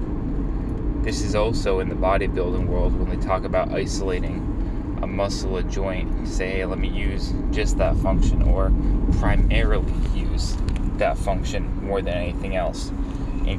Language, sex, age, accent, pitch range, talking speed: English, male, 20-39, American, 90-95 Hz, 155 wpm